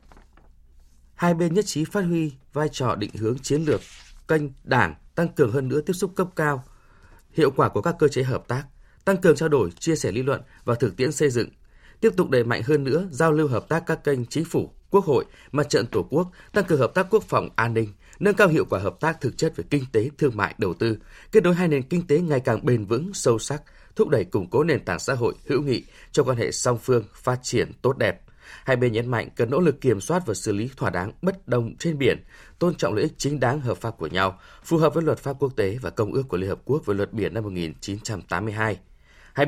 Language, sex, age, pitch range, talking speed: Vietnamese, male, 20-39, 110-160 Hz, 250 wpm